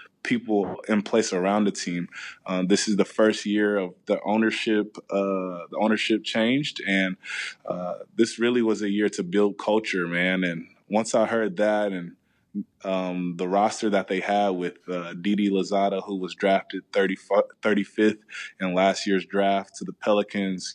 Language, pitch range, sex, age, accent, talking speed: English, 95-110 Hz, male, 20-39, American, 165 wpm